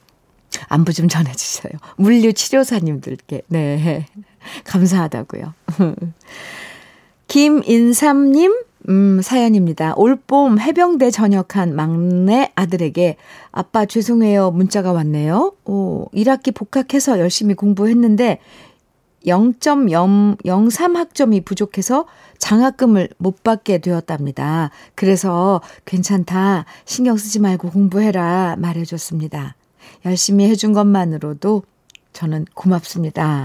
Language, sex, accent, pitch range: Korean, female, native, 170-220 Hz